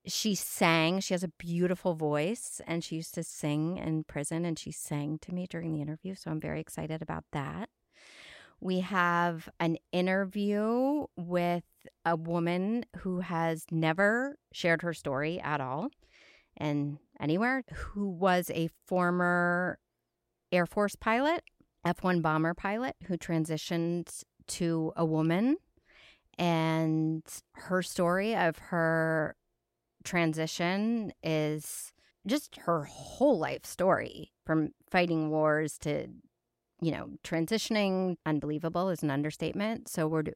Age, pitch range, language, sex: 30-49, 155-185 Hz, English, female